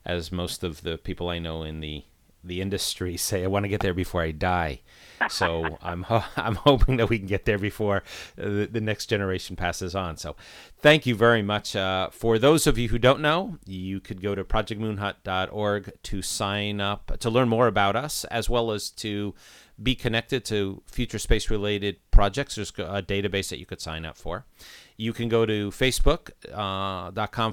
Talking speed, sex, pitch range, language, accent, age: 190 wpm, male, 90-110 Hz, English, American, 40-59